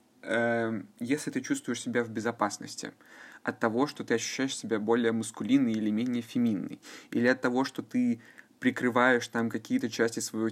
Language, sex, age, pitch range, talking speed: Russian, male, 20-39, 115-150 Hz, 155 wpm